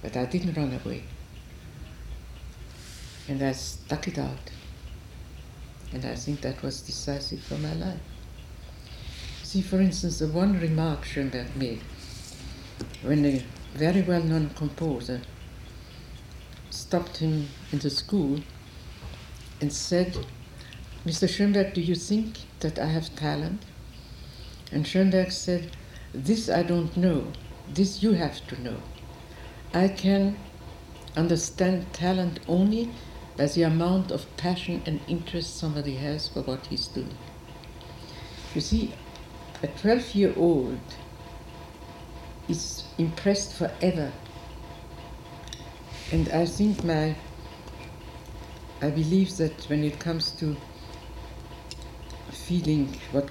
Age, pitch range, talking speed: 60-79, 135-175 Hz, 110 wpm